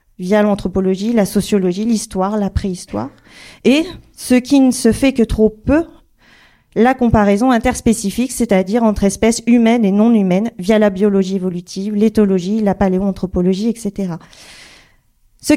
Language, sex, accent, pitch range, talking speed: French, female, French, 205-245 Hz, 135 wpm